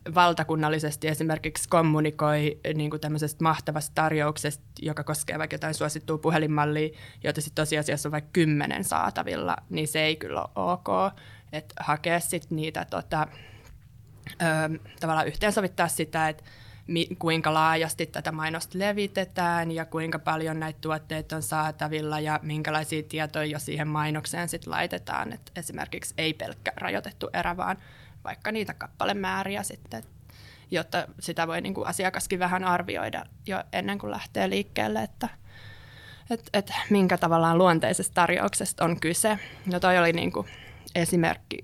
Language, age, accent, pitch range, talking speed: Finnish, 20-39, native, 150-170 Hz, 140 wpm